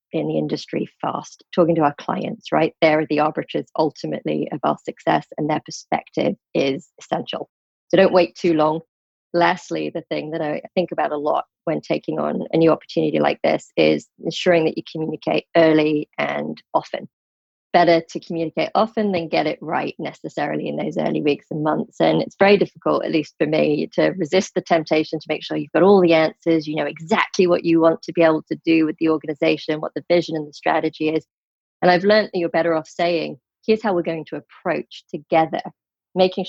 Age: 30-49